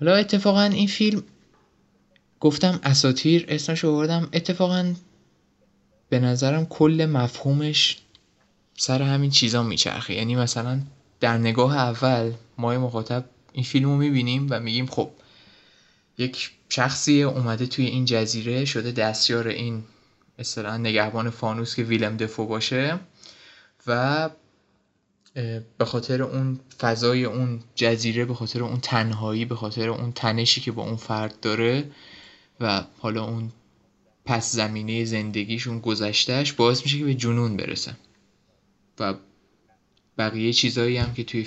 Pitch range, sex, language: 115-135 Hz, male, Persian